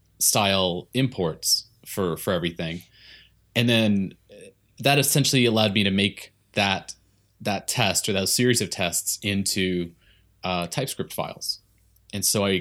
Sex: male